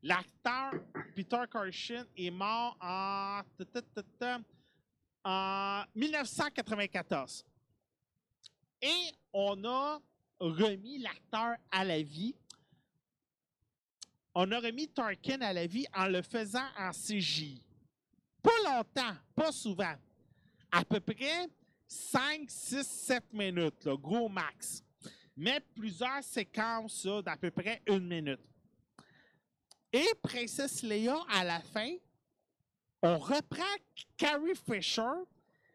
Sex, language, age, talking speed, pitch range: male, French, 40-59, 100 wpm, 190-265 Hz